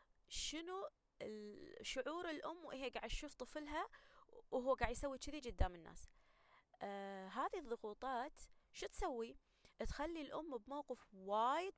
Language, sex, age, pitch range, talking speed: Arabic, female, 20-39, 215-280 Hz, 110 wpm